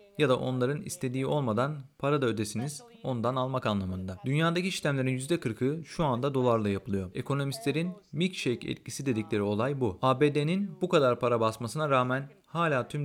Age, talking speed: 40-59, 145 wpm